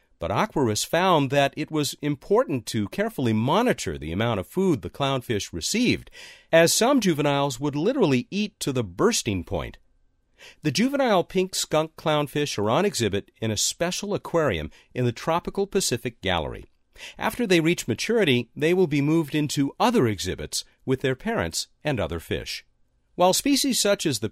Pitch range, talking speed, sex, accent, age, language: 115-175 Hz, 165 wpm, male, American, 50-69, English